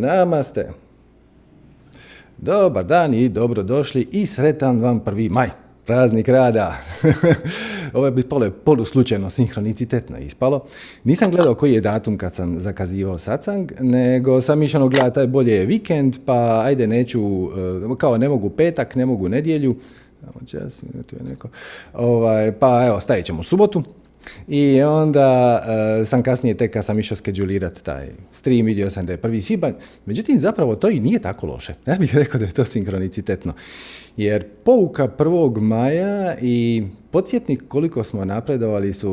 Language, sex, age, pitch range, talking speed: Croatian, male, 40-59, 105-150 Hz, 145 wpm